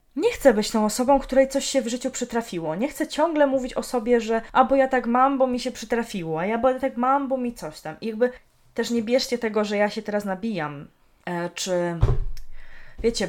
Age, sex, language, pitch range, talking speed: 20-39, female, Polish, 185-235 Hz, 225 wpm